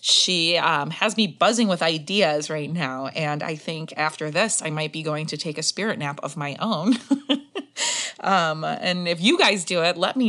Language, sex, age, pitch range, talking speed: English, female, 20-39, 155-200 Hz, 205 wpm